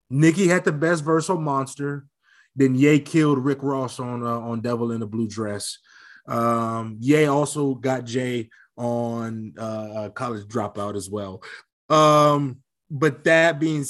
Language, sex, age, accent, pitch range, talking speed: English, male, 20-39, American, 115-145 Hz, 150 wpm